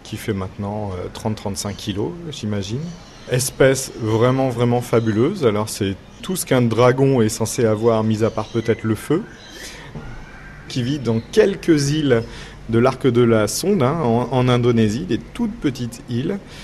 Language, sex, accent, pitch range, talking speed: French, male, French, 110-135 Hz, 155 wpm